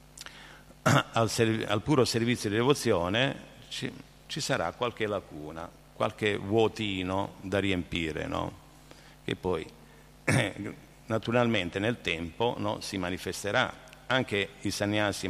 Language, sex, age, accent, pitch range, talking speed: Italian, male, 50-69, native, 90-115 Hz, 110 wpm